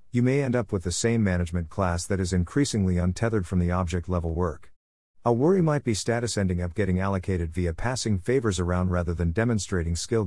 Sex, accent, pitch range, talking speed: male, American, 90-115 Hz, 205 wpm